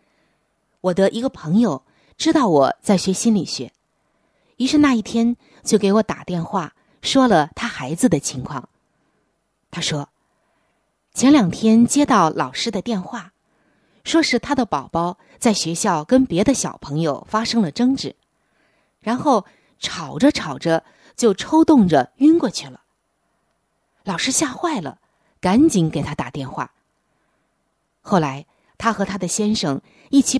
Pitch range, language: 165-250 Hz, Chinese